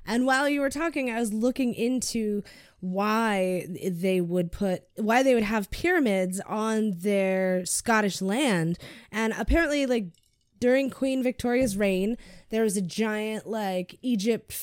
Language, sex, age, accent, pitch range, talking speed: English, female, 20-39, American, 185-225 Hz, 145 wpm